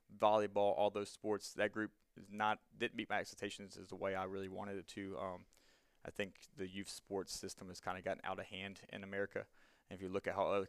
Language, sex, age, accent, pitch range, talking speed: English, male, 20-39, American, 95-110 Hz, 235 wpm